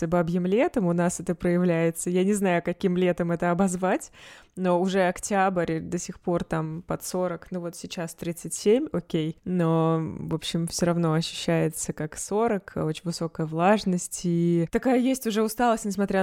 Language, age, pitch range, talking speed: Russian, 20-39, 165-195 Hz, 165 wpm